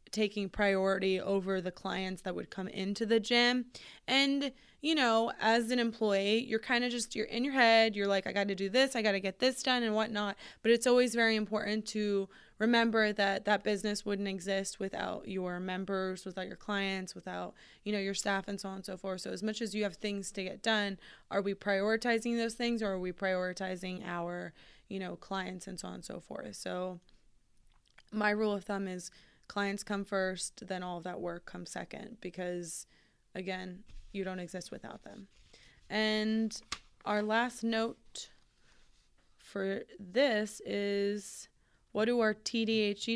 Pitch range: 190-220 Hz